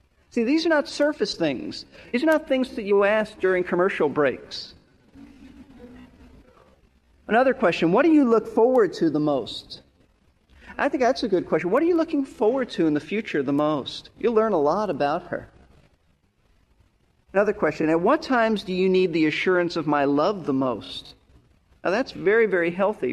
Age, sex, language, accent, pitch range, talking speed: 40-59, male, English, American, 150-225 Hz, 180 wpm